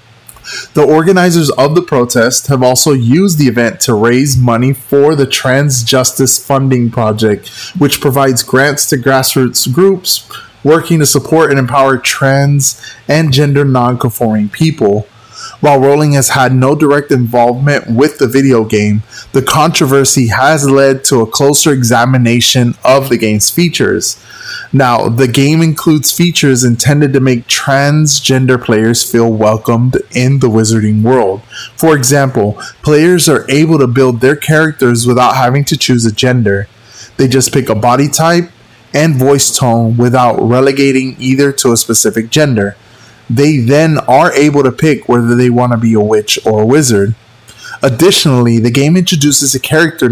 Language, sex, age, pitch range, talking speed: English, male, 20-39, 120-145 Hz, 150 wpm